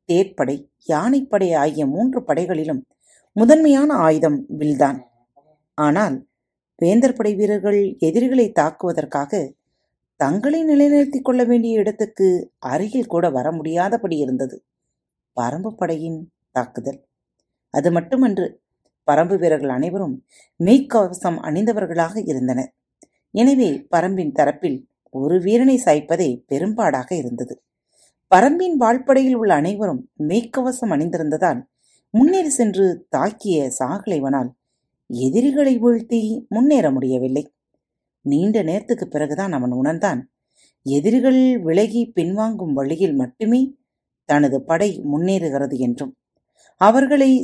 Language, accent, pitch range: Tamil, native, 150-245 Hz